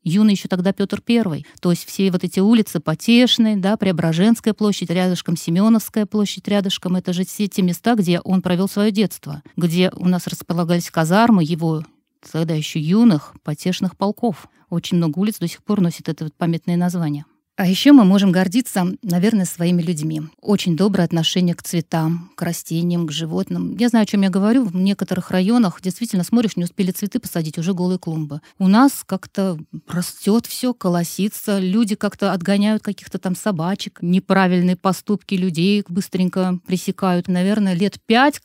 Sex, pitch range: female, 170-205 Hz